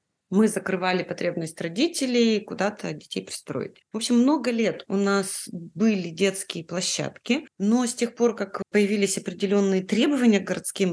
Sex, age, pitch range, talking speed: female, 30-49, 180-230 Hz, 145 wpm